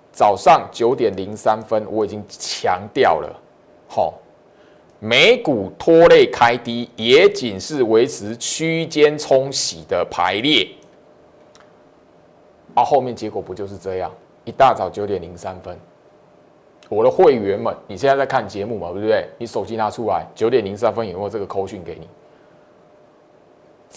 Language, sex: Chinese, male